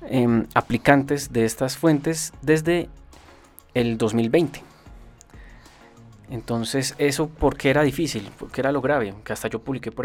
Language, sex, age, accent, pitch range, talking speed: Spanish, male, 20-39, Colombian, 115-140 Hz, 125 wpm